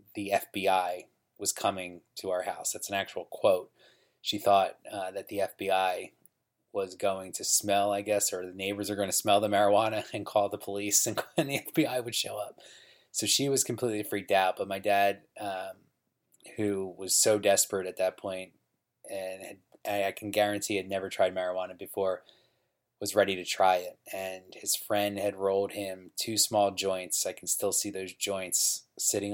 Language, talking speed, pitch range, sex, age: English, 185 wpm, 90-105 Hz, male, 20-39